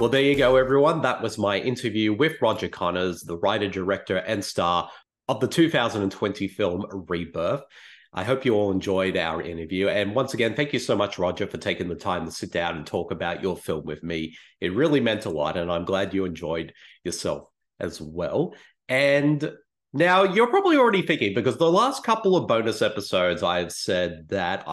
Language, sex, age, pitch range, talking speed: English, male, 30-49, 90-145 Hz, 195 wpm